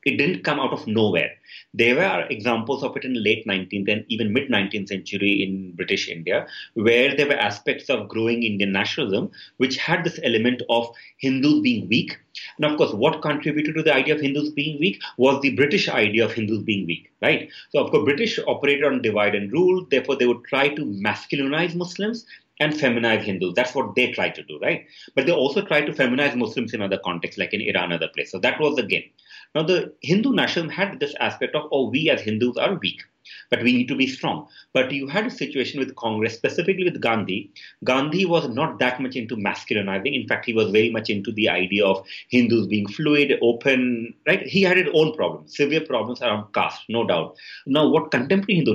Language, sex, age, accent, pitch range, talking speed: English, male, 30-49, Indian, 110-155 Hz, 210 wpm